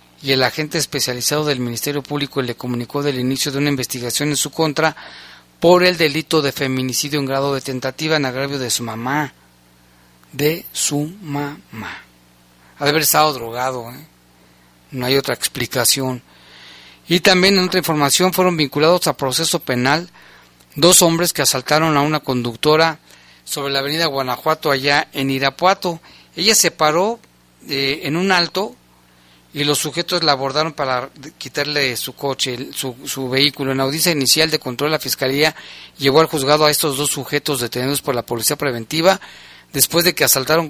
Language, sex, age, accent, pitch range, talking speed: Spanish, male, 40-59, Mexican, 125-155 Hz, 160 wpm